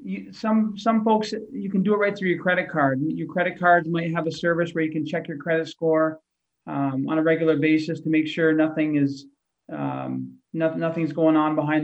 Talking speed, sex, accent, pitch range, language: 220 wpm, male, American, 150-175 Hz, English